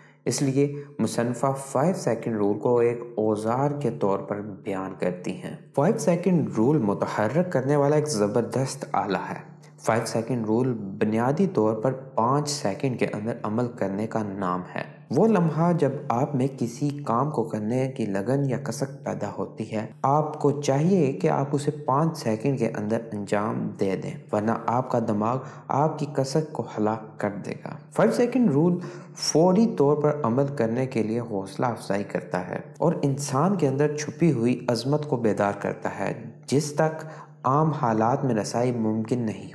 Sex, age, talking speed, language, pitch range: male, 20-39, 175 wpm, Urdu, 115-150 Hz